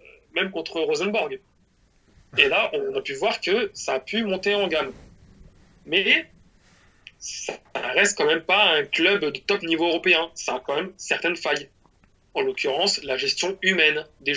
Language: French